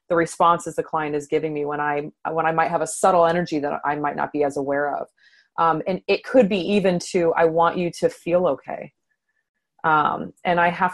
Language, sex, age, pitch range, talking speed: English, female, 20-39, 165-200 Hz, 220 wpm